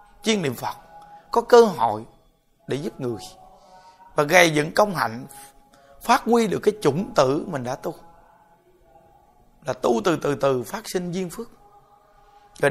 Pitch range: 145-210 Hz